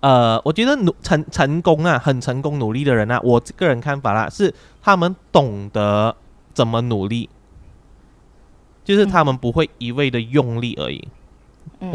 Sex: male